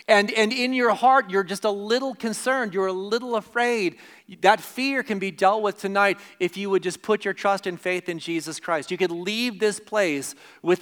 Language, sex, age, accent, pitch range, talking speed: English, male, 40-59, American, 165-210 Hz, 215 wpm